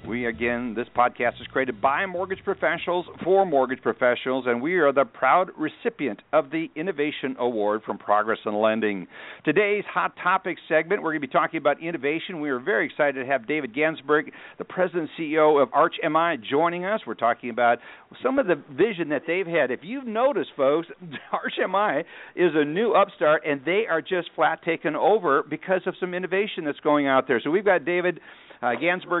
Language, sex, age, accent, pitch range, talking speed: English, male, 60-79, American, 130-180 Hz, 190 wpm